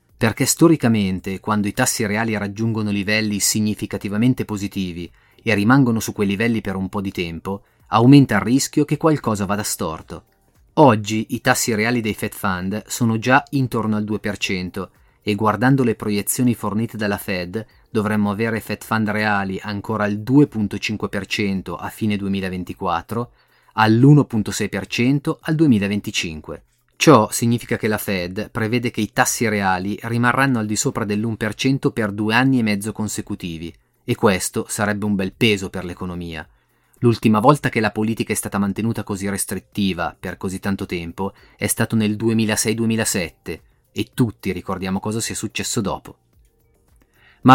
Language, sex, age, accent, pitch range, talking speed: Italian, male, 30-49, native, 100-115 Hz, 145 wpm